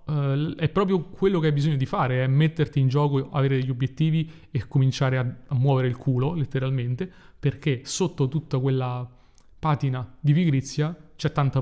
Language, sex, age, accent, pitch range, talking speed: Italian, male, 30-49, native, 130-155 Hz, 160 wpm